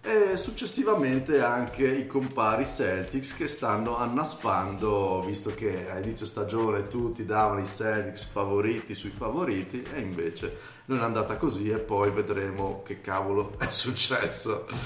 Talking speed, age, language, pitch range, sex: 135 wpm, 30-49, Italian, 100-120 Hz, male